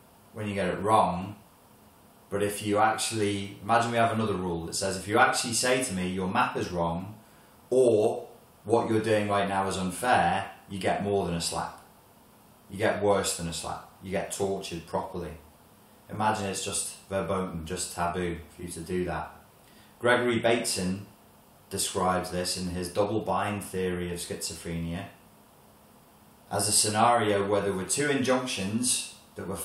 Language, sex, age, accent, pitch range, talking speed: English, male, 30-49, British, 90-115 Hz, 165 wpm